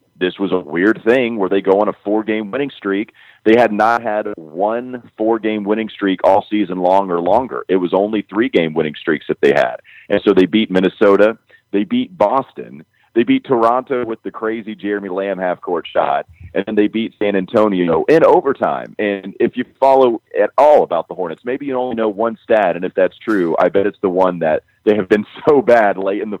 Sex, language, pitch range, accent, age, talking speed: male, English, 90-110 Hz, American, 40-59, 220 wpm